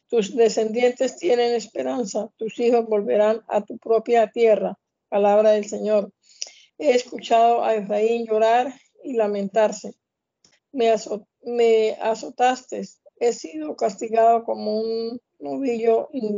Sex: female